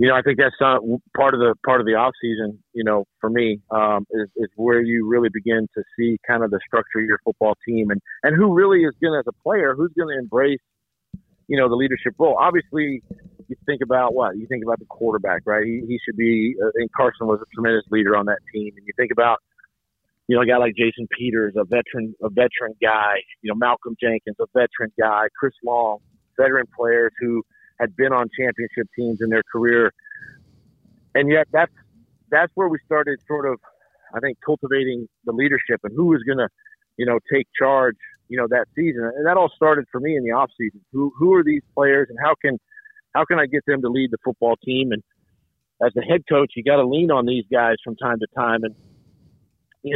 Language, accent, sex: English, American, male